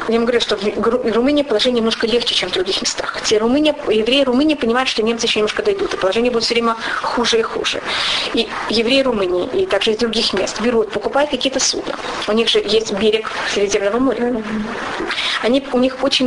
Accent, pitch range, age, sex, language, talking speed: native, 225-280 Hz, 30-49, female, Russian, 200 wpm